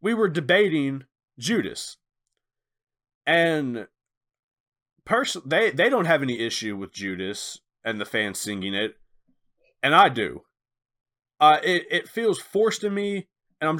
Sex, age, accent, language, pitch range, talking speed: male, 20-39, American, English, 125-195 Hz, 135 wpm